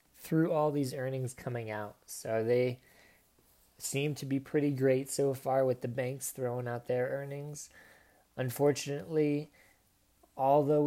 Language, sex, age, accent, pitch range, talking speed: English, male, 20-39, American, 115-135 Hz, 135 wpm